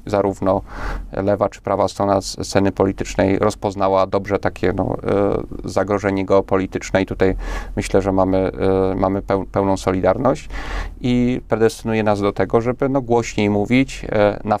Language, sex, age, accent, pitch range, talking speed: Polish, male, 30-49, native, 100-110 Hz, 125 wpm